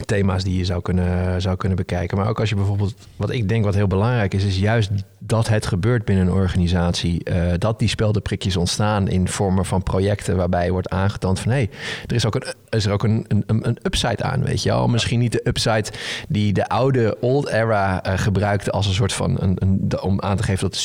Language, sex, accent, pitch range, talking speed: Dutch, male, Dutch, 95-110 Hz, 235 wpm